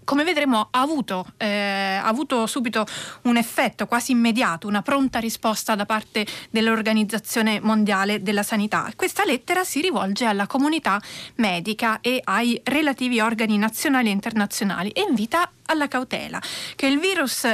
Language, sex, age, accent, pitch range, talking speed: Italian, female, 30-49, native, 205-275 Hz, 135 wpm